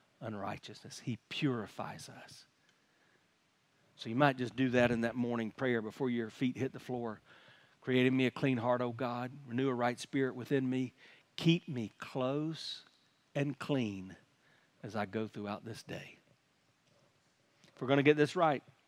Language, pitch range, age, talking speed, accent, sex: English, 130-195 Hz, 50-69, 165 wpm, American, male